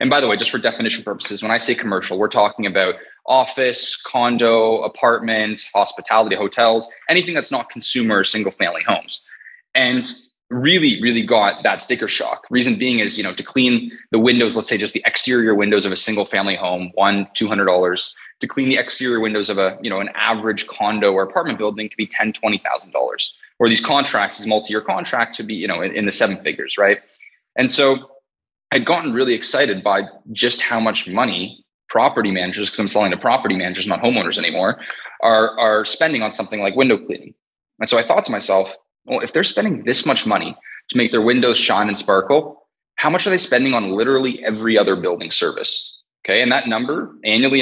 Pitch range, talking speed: 105-135 Hz, 200 wpm